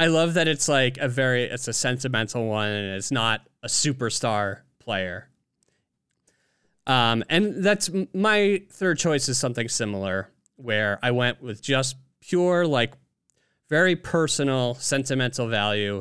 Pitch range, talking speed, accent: 110-150 Hz, 140 wpm, American